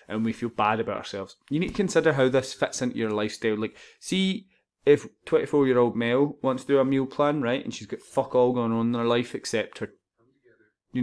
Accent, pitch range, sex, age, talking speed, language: British, 115-140 Hz, male, 20-39, 225 wpm, English